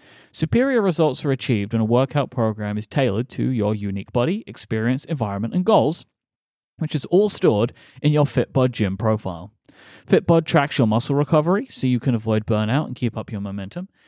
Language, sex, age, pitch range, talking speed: English, male, 30-49, 110-145 Hz, 180 wpm